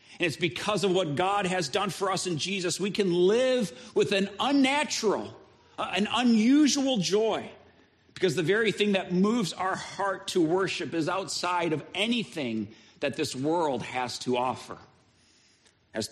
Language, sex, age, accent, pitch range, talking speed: English, male, 40-59, American, 130-195 Hz, 155 wpm